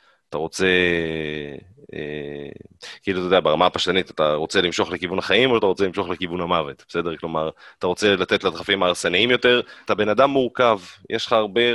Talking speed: 175 wpm